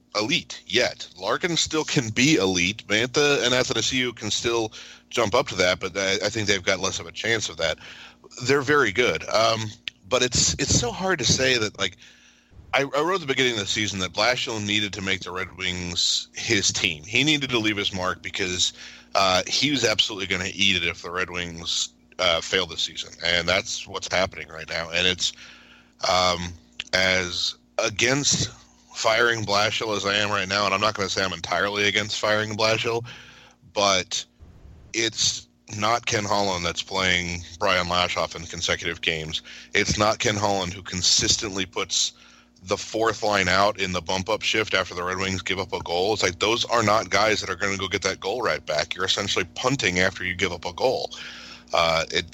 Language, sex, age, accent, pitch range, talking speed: English, male, 40-59, American, 90-115 Hz, 200 wpm